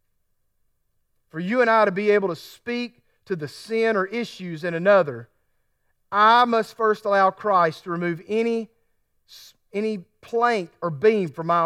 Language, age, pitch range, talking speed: English, 40-59, 130-185 Hz, 155 wpm